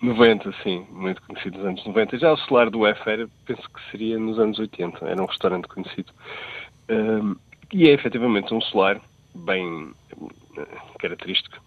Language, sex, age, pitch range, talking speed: Portuguese, male, 40-59, 100-125 Hz, 150 wpm